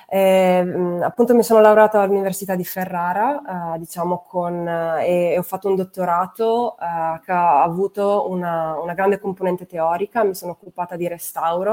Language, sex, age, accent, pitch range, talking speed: Italian, female, 20-39, native, 160-195 Hz, 160 wpm